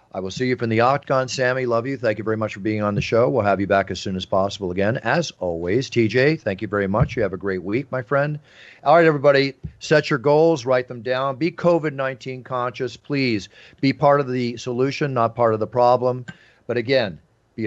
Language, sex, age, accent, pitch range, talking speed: English, male, 50-69, American, 105-135 Hz, 230 wpm